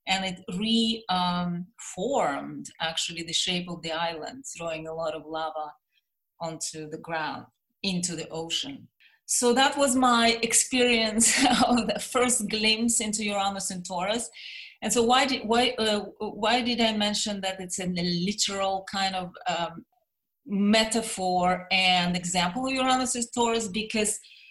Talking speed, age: 145 wpm, 30-49